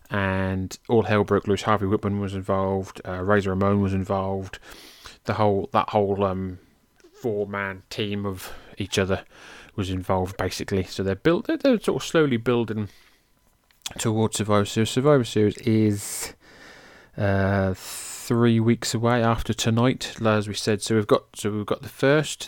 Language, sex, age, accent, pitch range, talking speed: English, male, 20-39, British, 95-115 Hz, 160 wpm